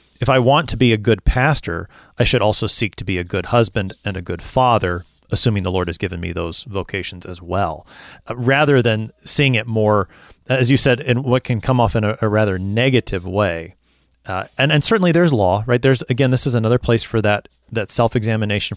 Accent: American